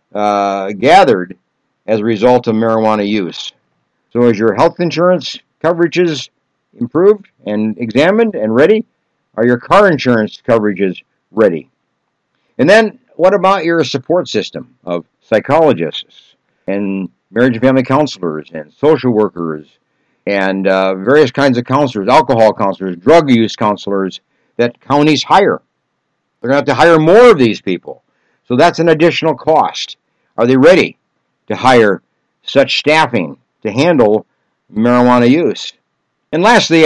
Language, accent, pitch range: English, American, 110-155 Hz